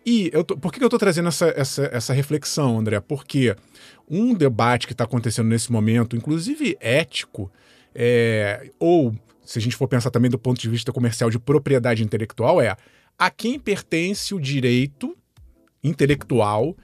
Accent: Brazilian